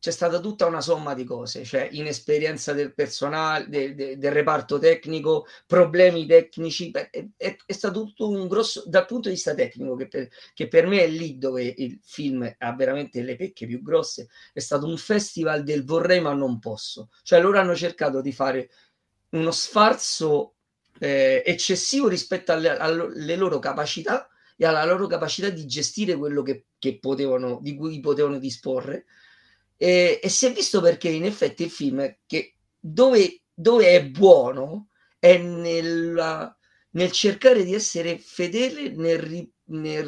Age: 40-59